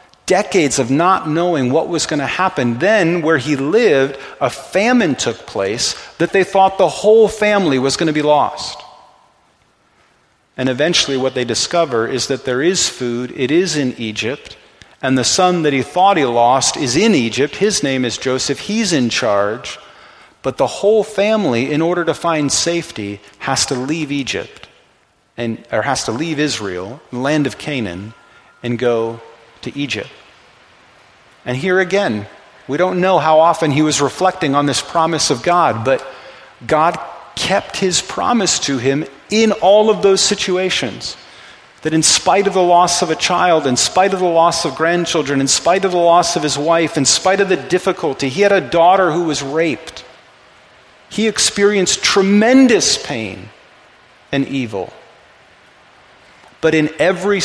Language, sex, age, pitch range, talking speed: English, male, 40-59, 135-185 Hz, 165 wpm